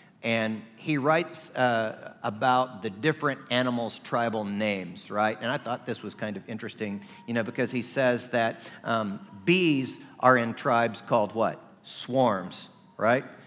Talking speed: 150 wpm